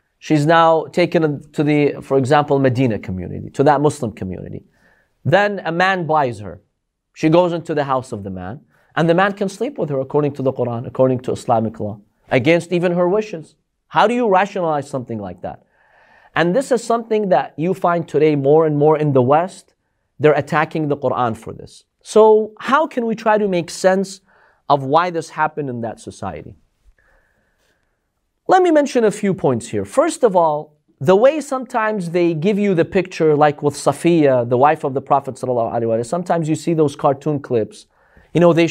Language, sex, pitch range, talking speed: English, male, 135-185 Hz, 190 wpm